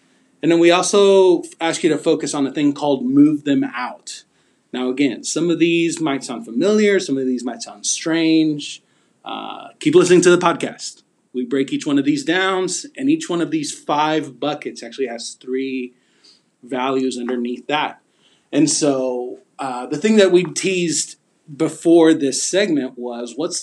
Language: English